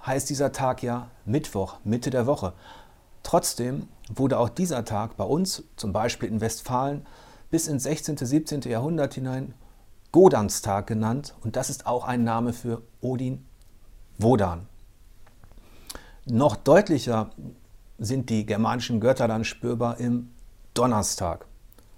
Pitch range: 105-135 Hz